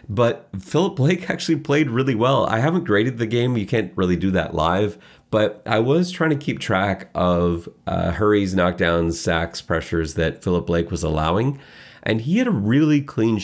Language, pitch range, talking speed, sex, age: English, 85-115 Hz, 190 wpm, male, 30-49